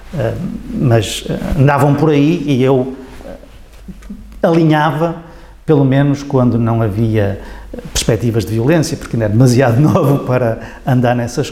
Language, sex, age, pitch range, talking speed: Portuguese, male, 50-69, 120-160 Hz, 135 wpm